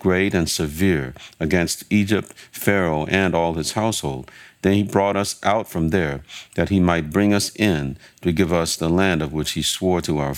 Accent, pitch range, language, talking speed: American, 80-100 Hz, English, 195 wpm